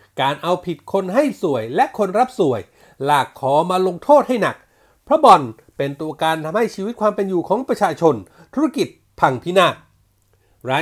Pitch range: 150-225 Hz